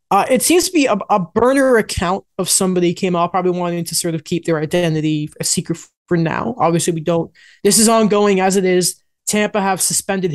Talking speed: 215 wpm